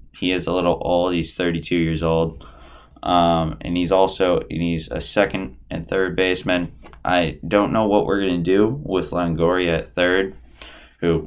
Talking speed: 170 wpm